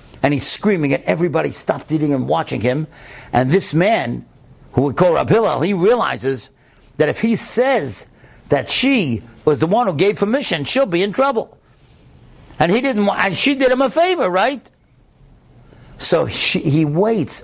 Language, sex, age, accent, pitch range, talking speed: English, male, 60-79, American, 145-205 Hz, 165 wpm